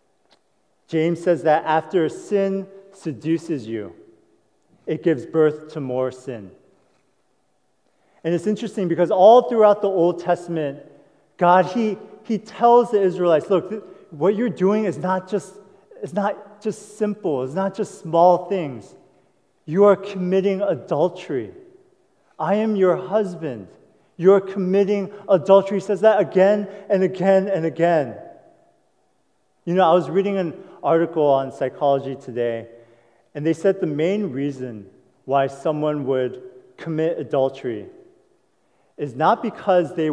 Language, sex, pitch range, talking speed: English, male, 145-195 Hz, 135 wpm